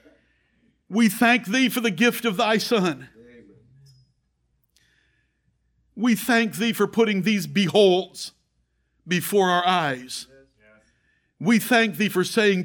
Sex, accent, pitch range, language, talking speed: male, American, 135-215 Hz, English, 115 wpm